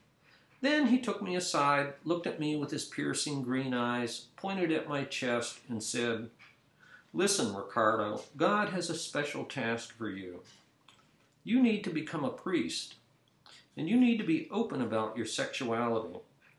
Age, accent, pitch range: 50-69, American, 120-175 Hz